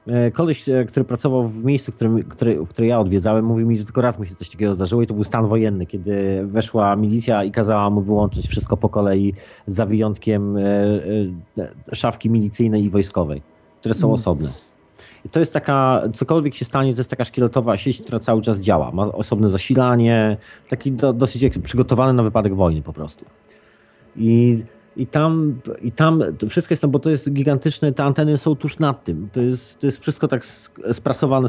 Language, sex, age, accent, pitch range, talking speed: Polish, male, 30-49, native, 105-130 Hz, 185 wpm